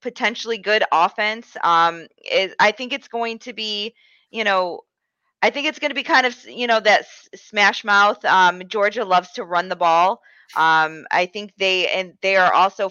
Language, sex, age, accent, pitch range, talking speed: English, female, 20-39, American, 175-215 Hz, 190 wpm